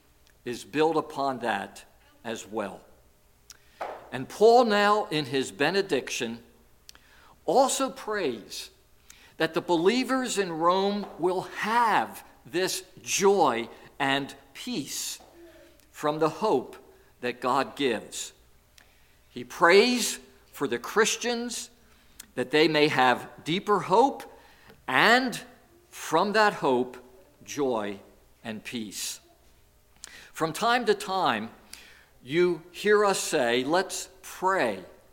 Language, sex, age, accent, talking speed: English, male, 50-69, American, 100 wpm